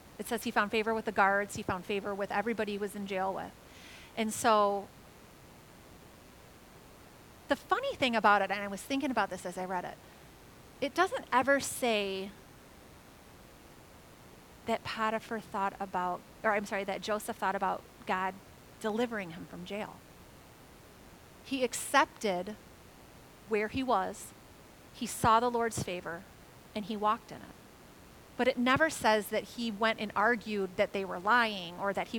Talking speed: 160 wpm